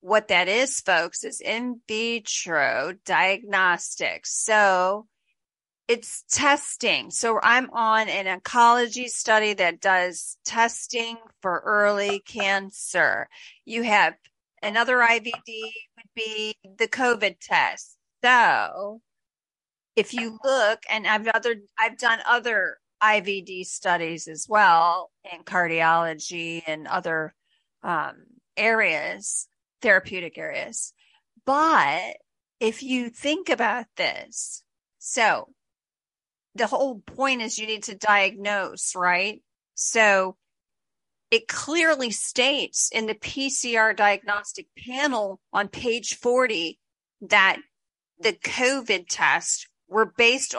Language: English